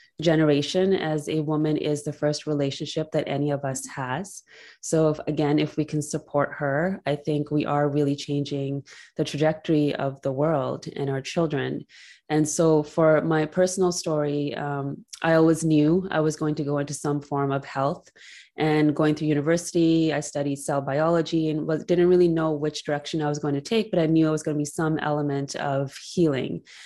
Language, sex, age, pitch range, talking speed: English, female, 20-39, 145-160 Hz, 190 wpm